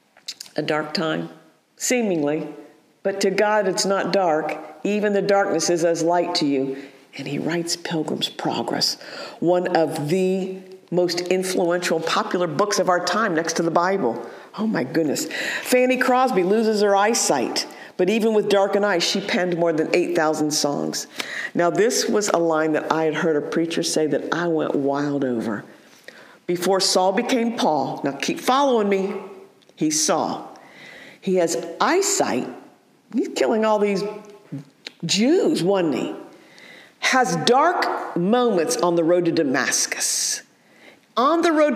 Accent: American